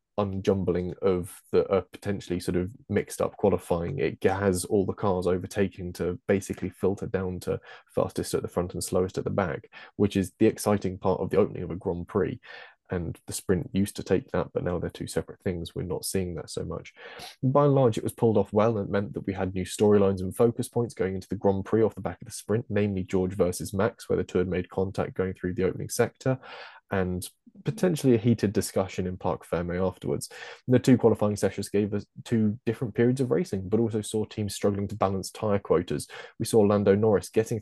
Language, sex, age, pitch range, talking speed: English, male, 20-39, 95-115 Hz, 220 wpm